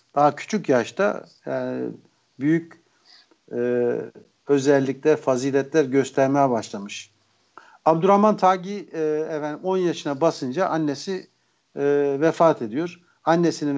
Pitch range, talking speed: 135-165 Hz, 90 wpm